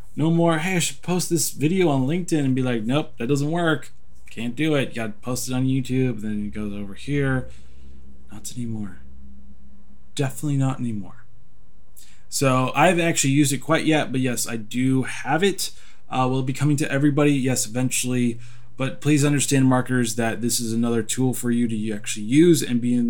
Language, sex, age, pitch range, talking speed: English, male, 20-39, 115-135 Hz, 195 wpm